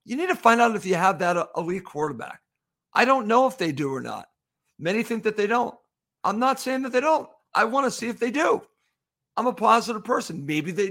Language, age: English, 50-69